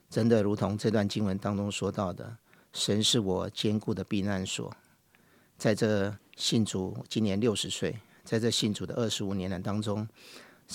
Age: 50-69